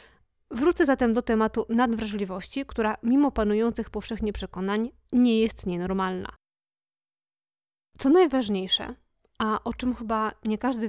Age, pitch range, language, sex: 20-39, 205-245 Hz, Polish, female